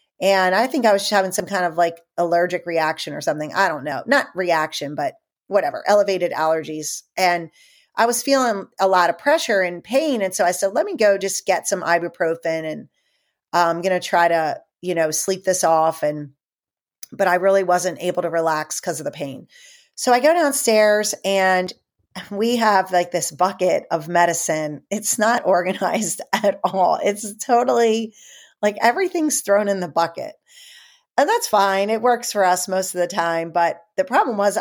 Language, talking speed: English, 185 wpm